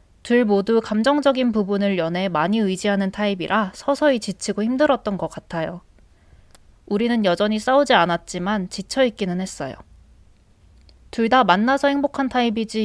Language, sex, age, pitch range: Korean, female, 20-39, 170-225 Hz